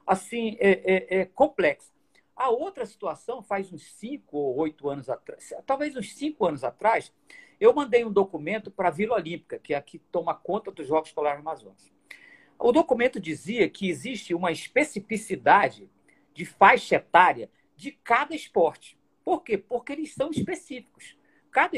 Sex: male